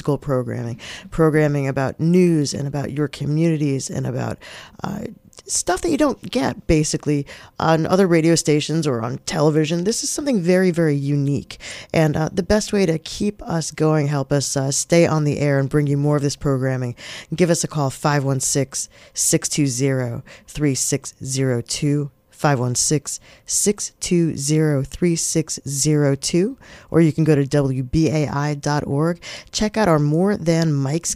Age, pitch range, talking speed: 40-59, 145-180 Hz, 135 wpm